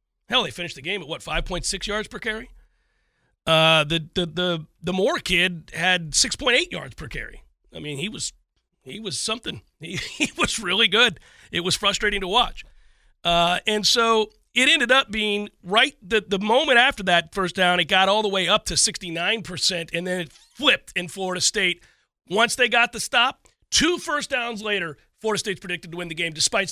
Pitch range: 170-210 Hz